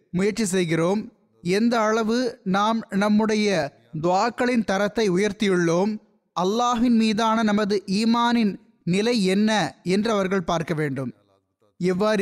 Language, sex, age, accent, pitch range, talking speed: Tamil, male, 20-39, native, 185-225 Hz, 100 wpm